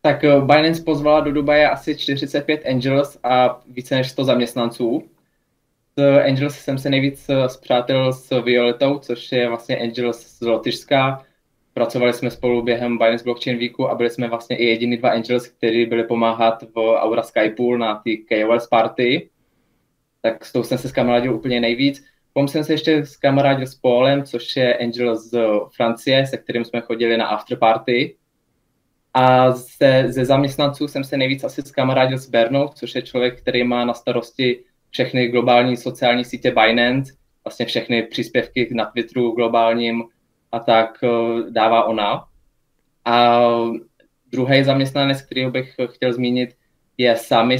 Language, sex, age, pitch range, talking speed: Slovak, male, 20-39, 115-135 Hz, 155 wpm